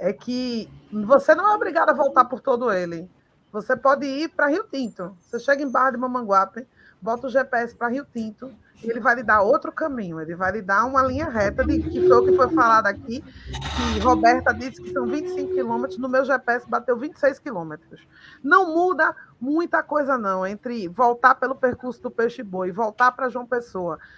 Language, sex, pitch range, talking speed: Portuguese, female, 215-275 Hz, 200 wpm